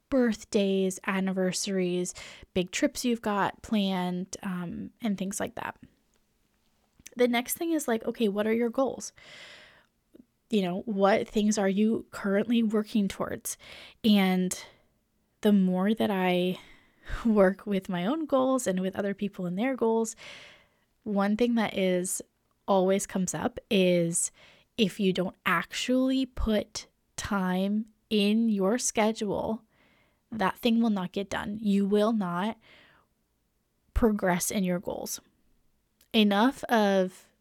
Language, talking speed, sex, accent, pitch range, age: English, 130 wpm, female, American, 185-225 Hz, 10-29